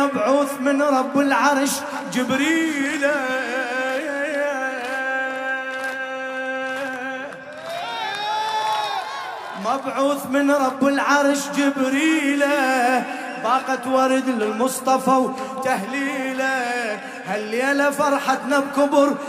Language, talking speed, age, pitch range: Arabic, 55 wpm, 20-39, 260-280 Hz